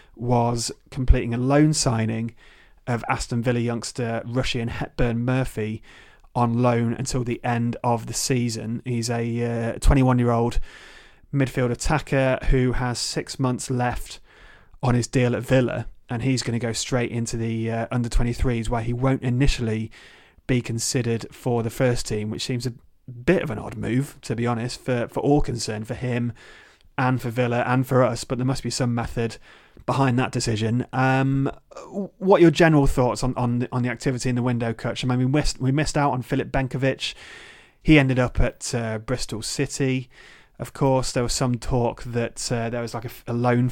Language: English